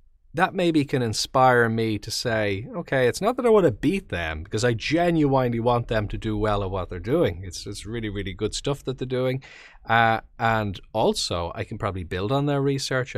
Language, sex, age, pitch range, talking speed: English, male, 30-49, 95-120 Hz, 215 wpm